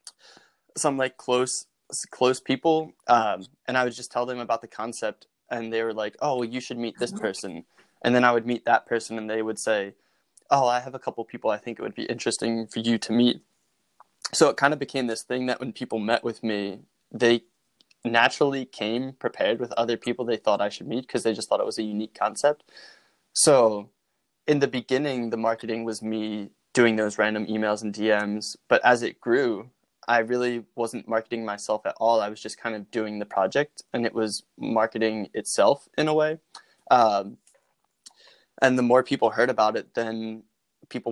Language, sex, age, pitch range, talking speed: English, male, 20-39, 110-125 Hz, 200 wpm